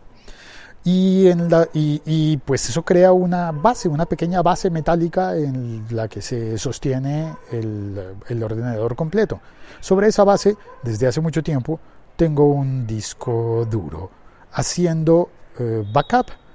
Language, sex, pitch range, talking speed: Spanish, male, 120-165 Hz, 125 wpm